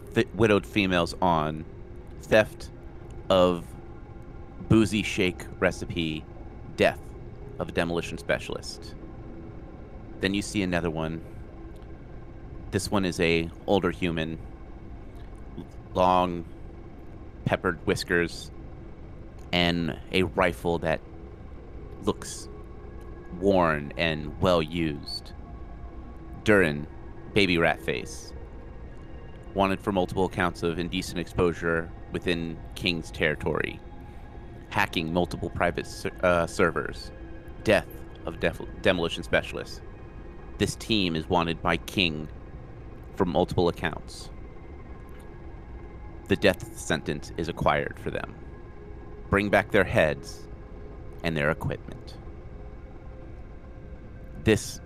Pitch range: 80-95 Hz